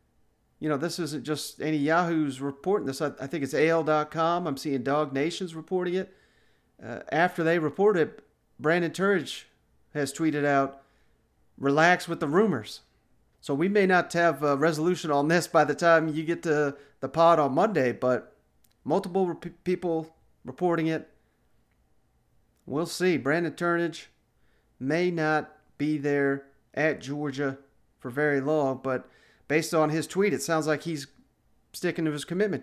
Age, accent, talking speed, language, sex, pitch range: 40-59, American, 155 wpm, English, male, 135-165 Hz